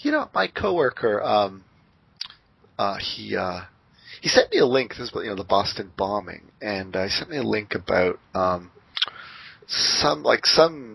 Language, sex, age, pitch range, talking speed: English, male, 30-49, 100-125 Hz, 170 wpm